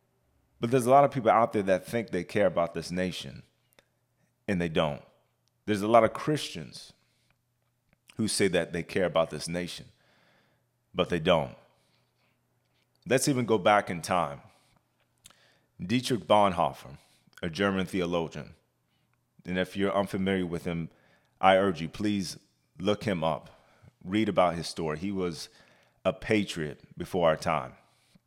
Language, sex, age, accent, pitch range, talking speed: English, male, 30-49, American, 85-110 Hz, 145 wpm